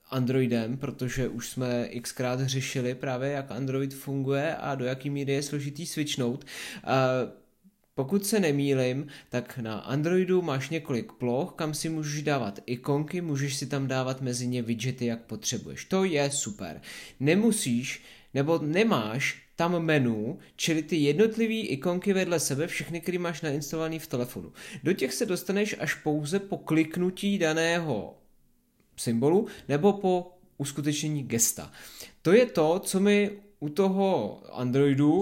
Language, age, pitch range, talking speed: Czech, 20-39, 135-180 Hz, 140 wpm